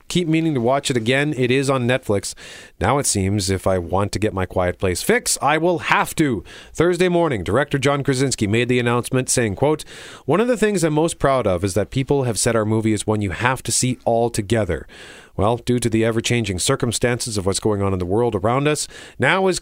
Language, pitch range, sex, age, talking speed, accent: English, 110-145 Hz, male, 40-59, 230 wpm, American